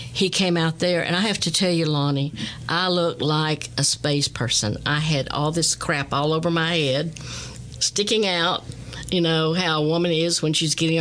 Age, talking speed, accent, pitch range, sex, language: 60-79, 200 wpm, American, 145-170 Hz, female, English